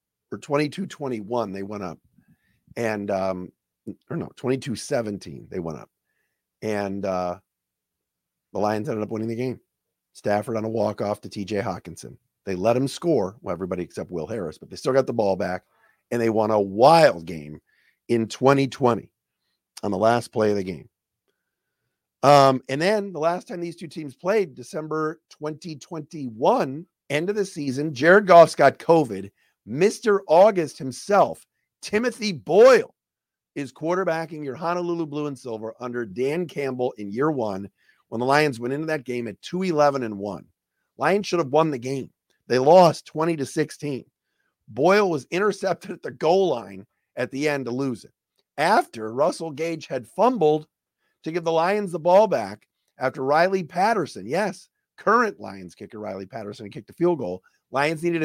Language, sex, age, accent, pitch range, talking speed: English, male, 50-69, American, 110-165 Hz, 170 wpm